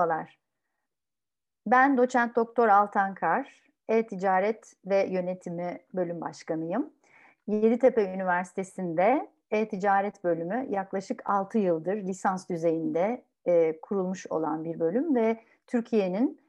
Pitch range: 180-260 Hz